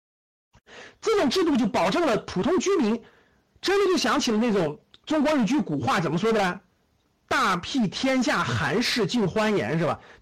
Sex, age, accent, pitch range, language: male, 50-69, native, 190-310 Hz, Chinese